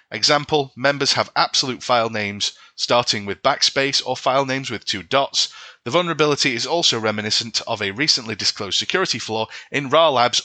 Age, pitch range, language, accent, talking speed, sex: 30-49, 110-145 Hz, English, British, 160 wpm, male